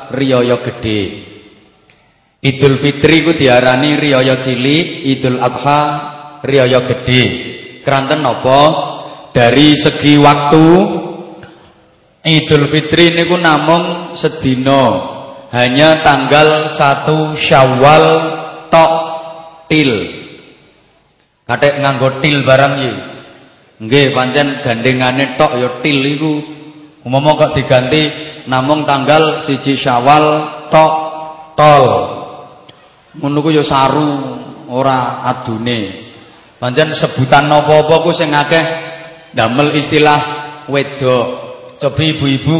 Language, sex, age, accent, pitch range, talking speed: English, male, 30-49, Indonesian, 135-155 Hz, 90 wpm